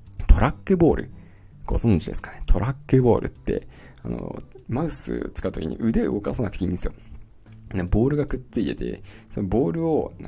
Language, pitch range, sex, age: Japanese, 95-120 Hz, male, 20-39